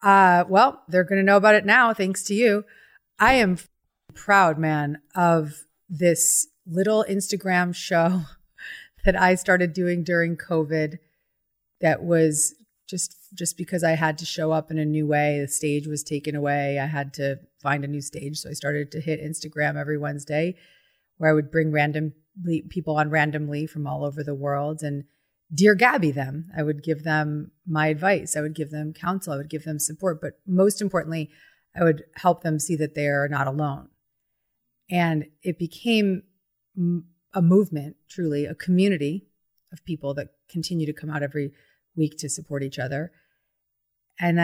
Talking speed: 175 wpm